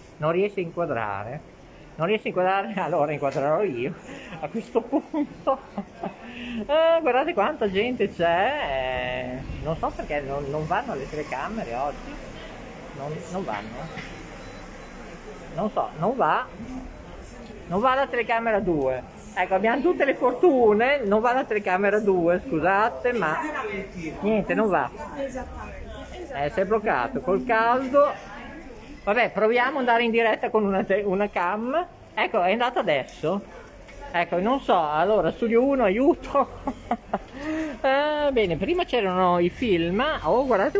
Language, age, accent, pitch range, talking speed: Italian, 50-69, native, 175-260 Hz, 130 wpm